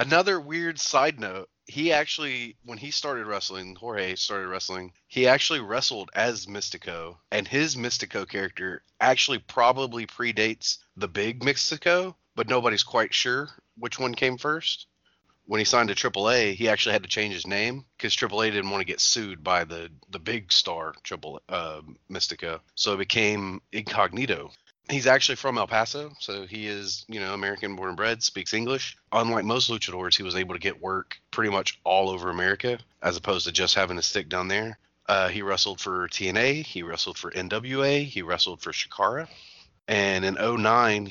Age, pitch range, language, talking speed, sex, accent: 30-49, 95-125 Hz, English, 175 wpm, male, American